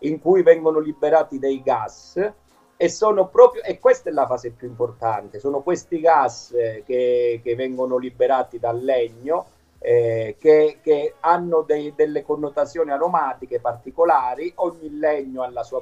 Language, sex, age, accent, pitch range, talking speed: Italian, male, 50-69, native, 130-190 Hz, 150 wpm